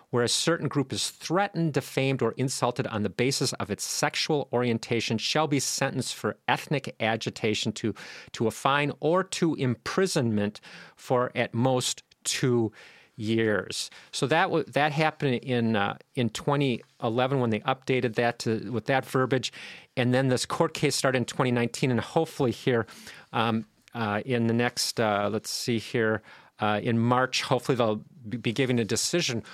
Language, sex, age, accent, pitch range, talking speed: English, male, 40-59, American, 120-150 Hz, 165 wpm